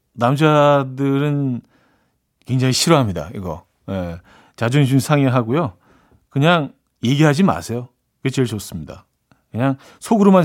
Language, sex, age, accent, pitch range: Korean, male, 40-59, native, 110-155 Hz